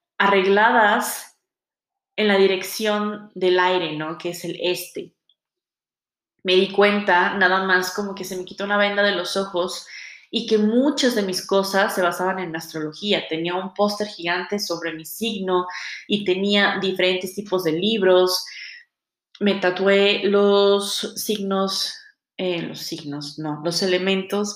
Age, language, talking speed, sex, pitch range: 20-39, Spanish, 140 wpm, female, 175-205 Hz